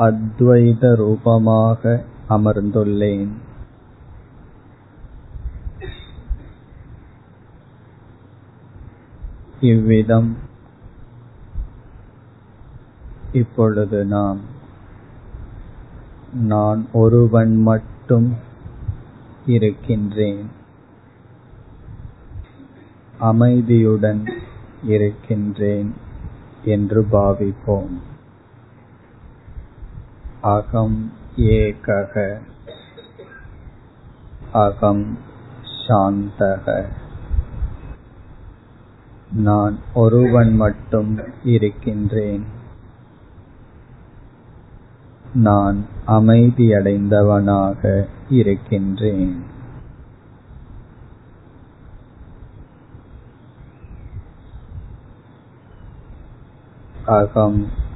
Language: Tamil